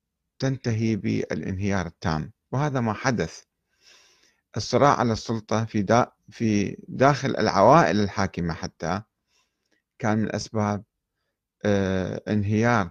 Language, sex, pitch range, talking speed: Arabic, male, 95-115 Hz, 90 wpm